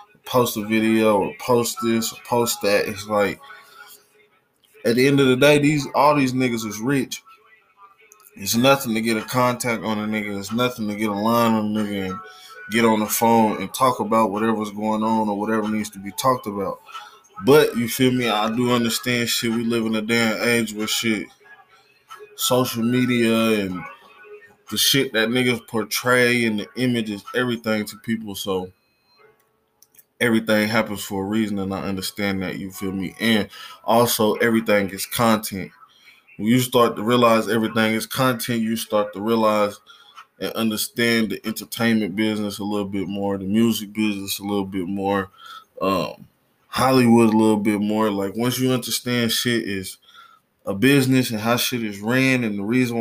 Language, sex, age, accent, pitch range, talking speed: English, male, 20-39, American, 105-125 Hz, 180 wpm